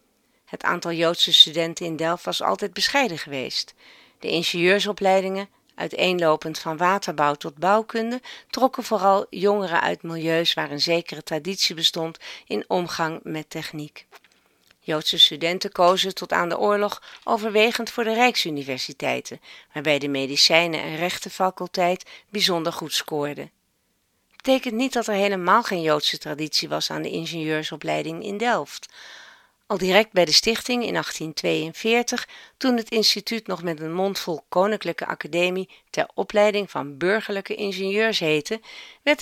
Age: 40-59